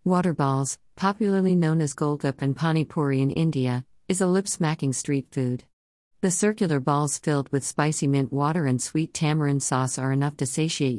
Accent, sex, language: American, female, English